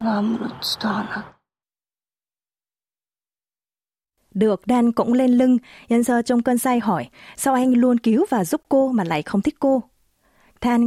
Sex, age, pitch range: female, 20-39, 180-240 Hz